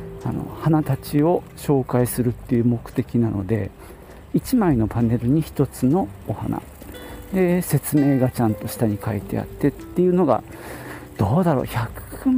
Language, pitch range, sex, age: Japanese, 105-155 Hz, male, 50-69